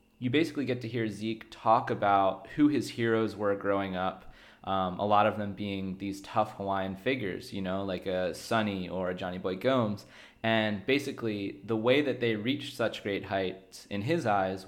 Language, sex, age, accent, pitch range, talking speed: English, male, 20-39, American, 95-115 Hz, 190 wpm